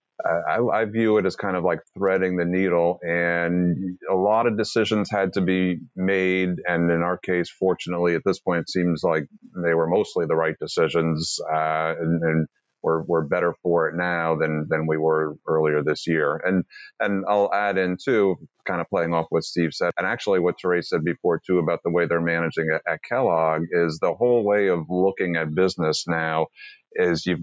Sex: male